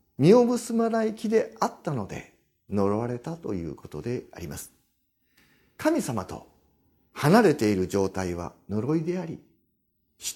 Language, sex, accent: Japanese, male, native